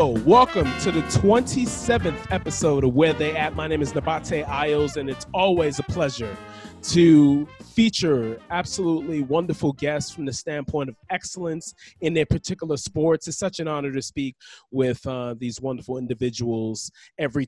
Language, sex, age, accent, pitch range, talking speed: English, male, 20-39, American, 135-175 Hz, 155 wpm